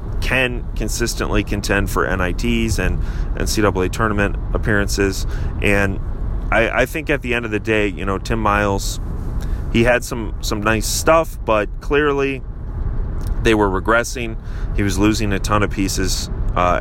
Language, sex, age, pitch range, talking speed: English, male, 30-49, 95-115 Hz, 155 wpm